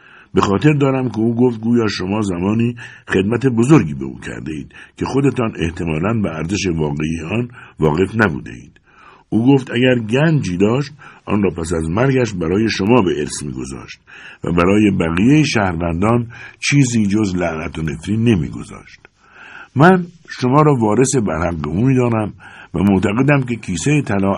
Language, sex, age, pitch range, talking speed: Persian, male, 60-79, 85-130 Hz, 160 wpm